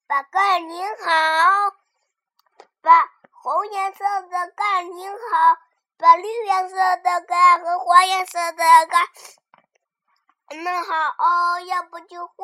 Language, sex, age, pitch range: Chinese, male, 20-39, 285-400 Hz